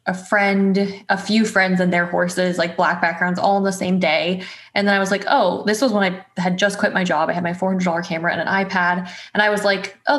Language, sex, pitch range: English, female, 180-205 Hz